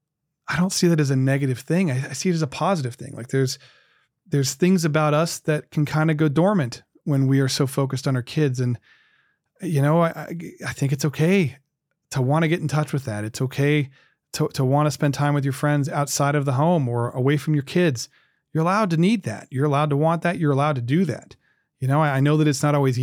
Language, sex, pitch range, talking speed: English, male, 135-165 Hz, 255 wpm